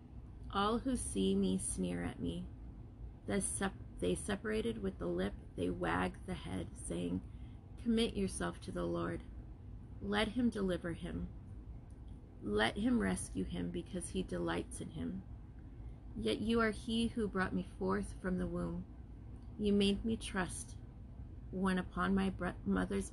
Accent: American